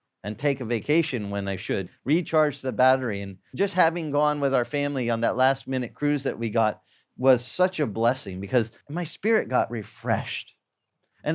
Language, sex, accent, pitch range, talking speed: English, male, American, 135-220 Hz, 185 wpm